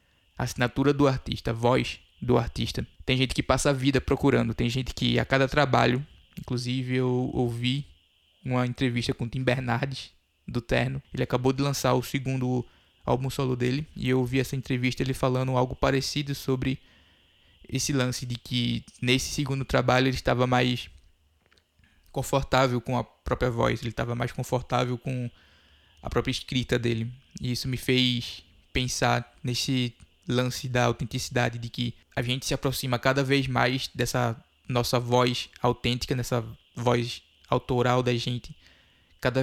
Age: 20-39